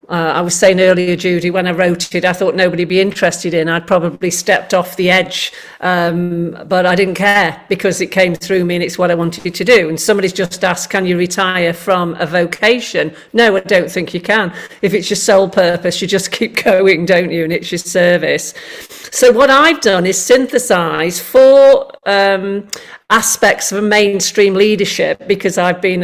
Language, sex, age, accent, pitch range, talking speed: English, female, 50-69, British, 175-205 Hz, 205 wpm